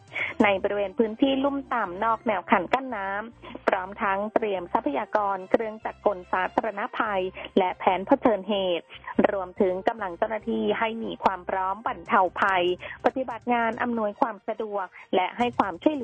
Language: Thai